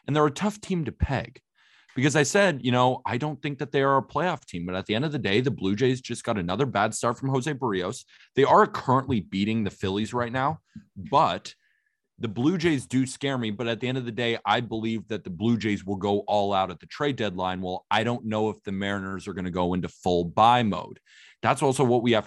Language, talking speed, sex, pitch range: English, 255 wpm, male, 95-125 Hz